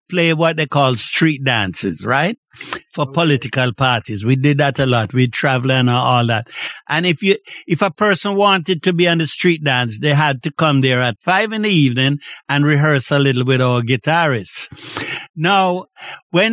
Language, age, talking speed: English, 60-79, 190 wpm